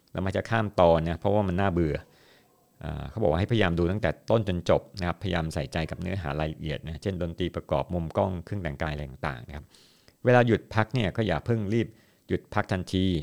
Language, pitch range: Thai, 85-105 Hz